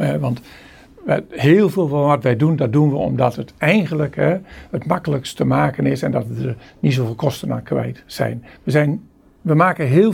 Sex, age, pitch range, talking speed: male, 50-69, 135-185 Hz, 195 wpm